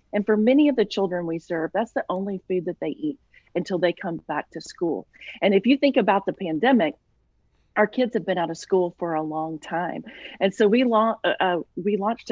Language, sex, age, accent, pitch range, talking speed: English, female, 40-59, American, 175-220 Hz, 225 wpm